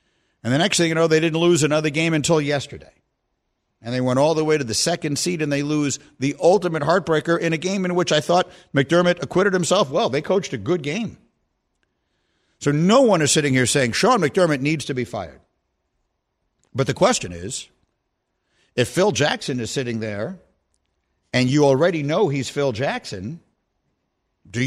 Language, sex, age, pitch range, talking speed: English, male, 50-69, 125-180 Hz, 185 wpm